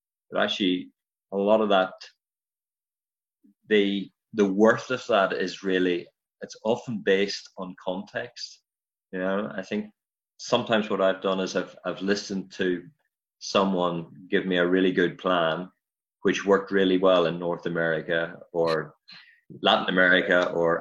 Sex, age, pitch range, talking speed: male, 30-49, 90-100 Hz, 140 wpm